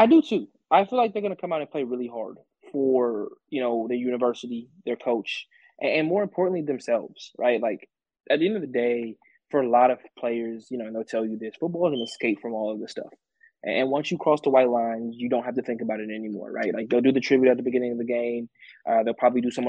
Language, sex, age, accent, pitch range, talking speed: English, male, 20-39, American, 115-135 Hz, 265 wpm